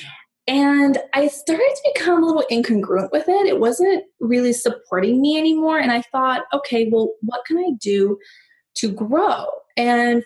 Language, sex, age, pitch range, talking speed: English, female, 20-39, 210-275 Hz, 165 wpm